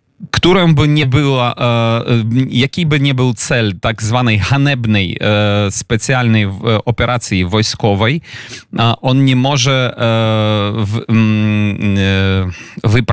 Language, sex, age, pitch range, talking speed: Polish, male, 30-49, 110-125 Hz, 105 wpm